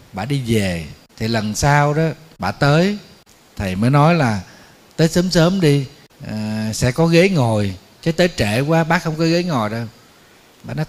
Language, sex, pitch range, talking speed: Vietnamese, male, 110-155 Hz, 185 wpm